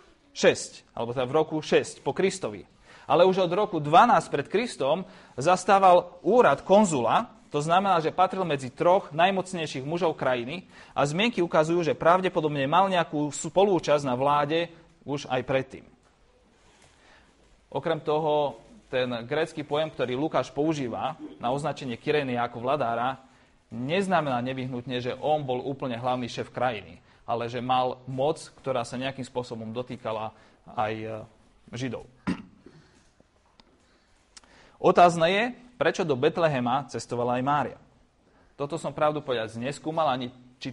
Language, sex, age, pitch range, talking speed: Slovak, male, 30-49, 125-165 Hz, 130 wpm